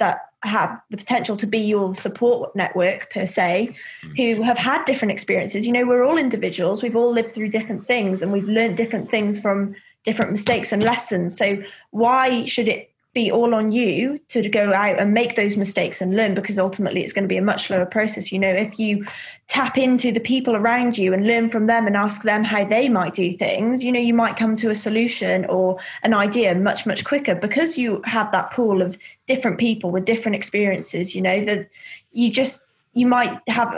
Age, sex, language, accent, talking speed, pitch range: 20-39, female, English, British, 210 wpm, 195-235 Hz